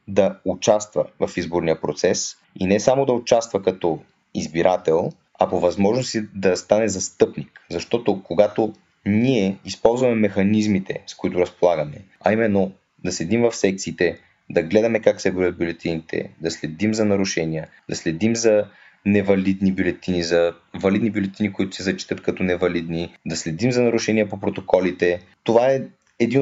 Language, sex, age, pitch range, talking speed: Bulgarian, male, 20-39, 95-115 Hz, 145 wpm